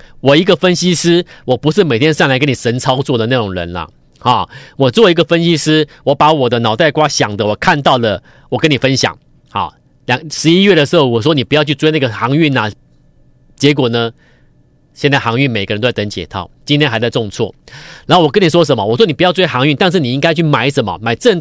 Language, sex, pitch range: Chinese, male, 125-180 Hz